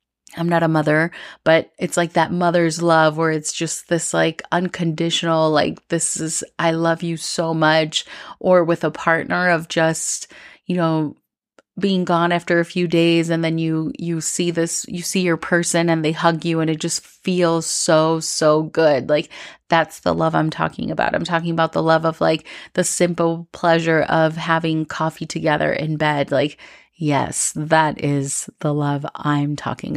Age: 30-49